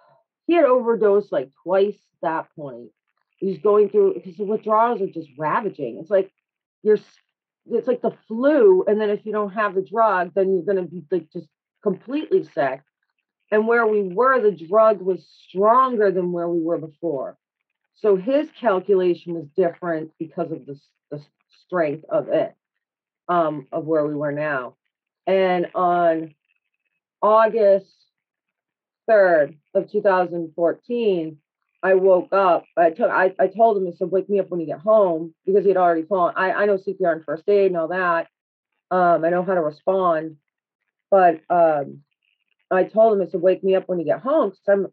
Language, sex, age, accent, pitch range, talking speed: English, female, 40-59, American, 170-220 Hz, 175 wpm